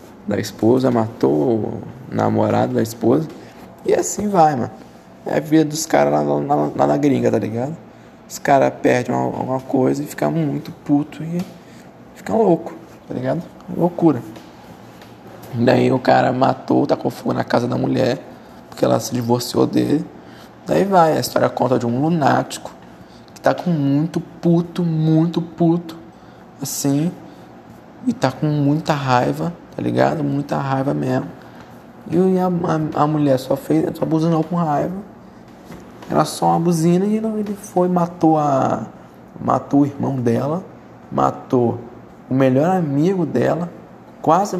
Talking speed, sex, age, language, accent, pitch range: 150 wpm, male, 20-39, Portuguese, Brazilian, 120-165 Hz